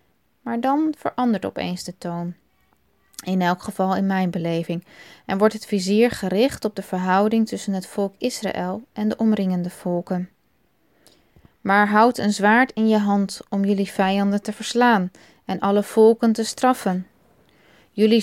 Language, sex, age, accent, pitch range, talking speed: Dutch, female, 20-39, Dutch, 185-220 Hz, 150 wpm